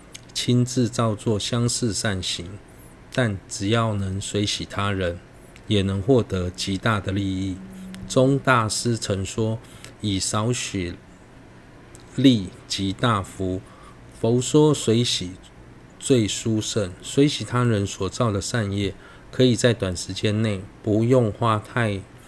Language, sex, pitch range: Chinese, male, 100-125 Hz